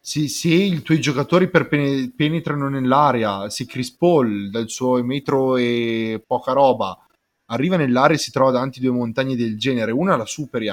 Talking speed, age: 170 wpm, 30-49